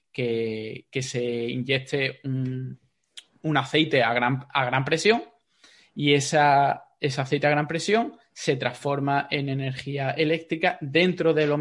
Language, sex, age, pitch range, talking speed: Spanish, male, 20-39, 125-160 Hz, 130 wpm